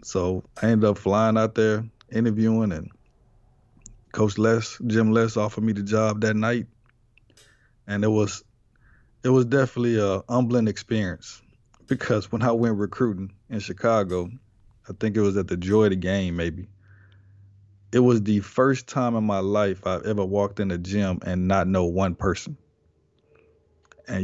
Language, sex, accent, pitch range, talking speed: English, male, American, 95-110 Hz, 165 wpm